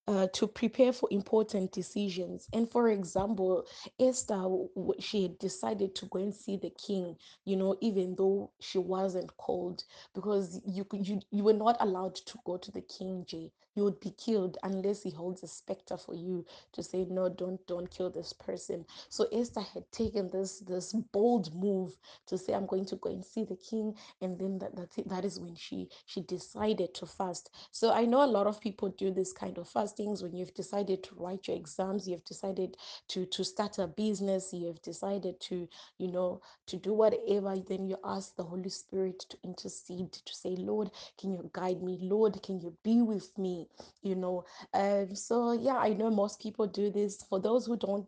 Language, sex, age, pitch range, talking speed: English, female, 20-39, 185-205 Hz, 200 wpm